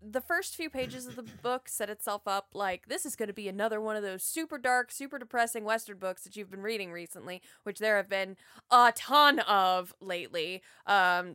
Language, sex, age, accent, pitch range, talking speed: English, female, 20-39, American, 215-305 Hz, 210 wpm